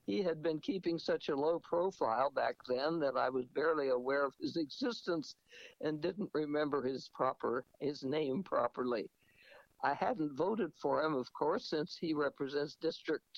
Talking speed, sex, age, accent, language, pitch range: 165 wpm, male, 60-79, American, English, 140-175 Hz